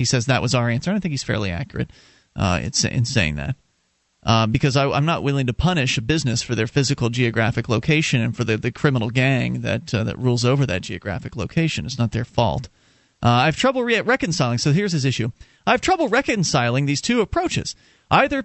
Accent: American